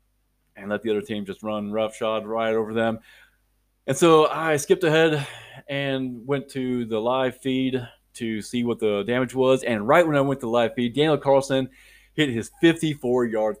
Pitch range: 105-130 Hz